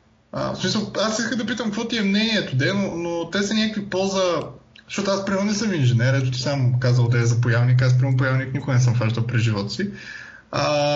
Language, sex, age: Bulgarian, male, 20-39